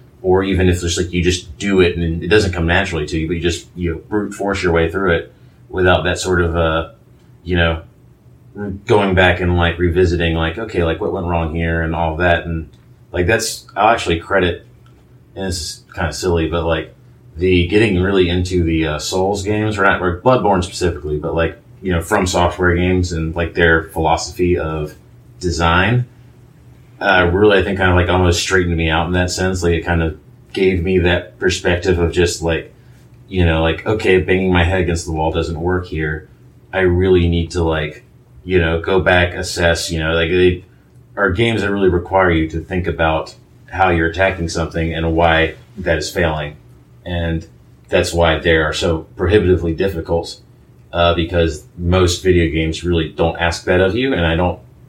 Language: English